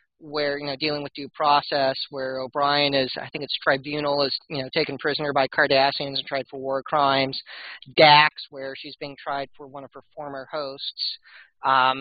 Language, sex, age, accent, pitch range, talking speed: English, male, 40-59, American, 135-155 Hz, 190 wpm